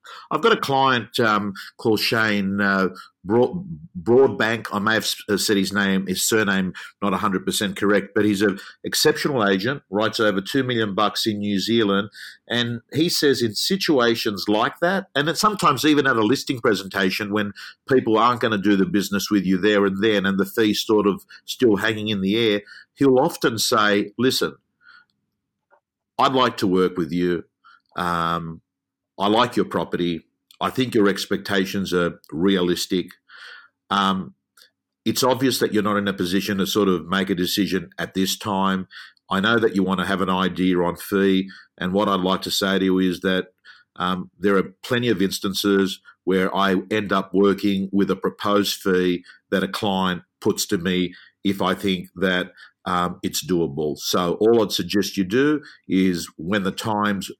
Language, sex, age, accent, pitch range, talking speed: English, male, 50-69, Australian, 95-110 Hz, 175 wpm